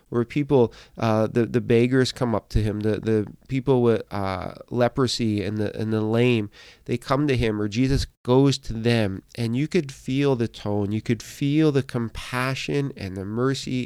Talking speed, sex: 190 wpm, male